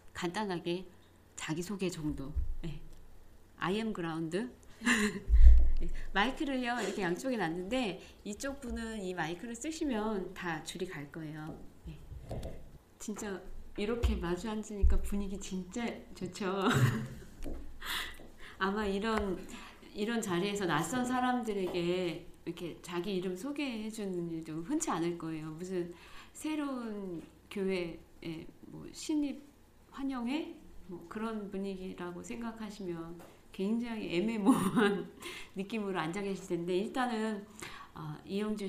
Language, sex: Korean, female